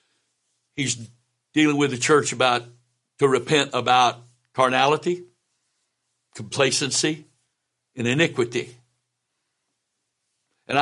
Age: 60-79